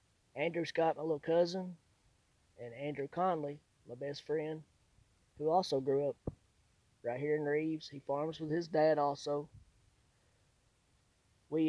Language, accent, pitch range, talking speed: English, American, 120-150 Hz, 135 wpm